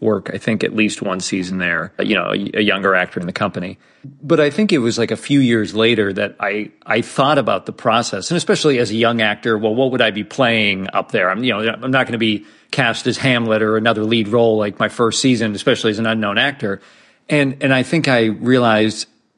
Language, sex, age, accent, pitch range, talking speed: English, male, 40-59, American, 110-130 Hz, 240 wpm